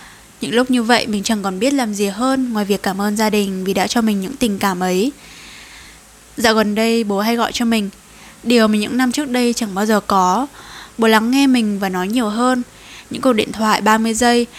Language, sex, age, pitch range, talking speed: Vietnamese, female, 10-29, 200-245 Hz, 235 wpm